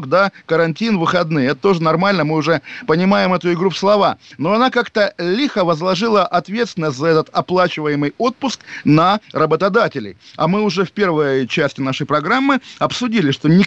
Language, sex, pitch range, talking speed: Russian, male, 150-200 Hz, 160 wpm